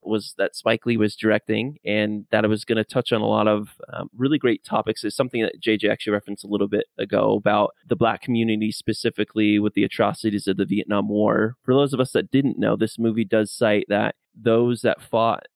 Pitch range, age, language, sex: 105-120 Hz, 20-39, English, male